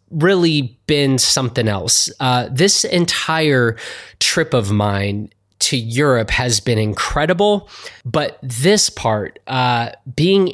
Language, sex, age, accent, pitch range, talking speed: English, male, 20-39, American, 115-150 Hz, 115 wpm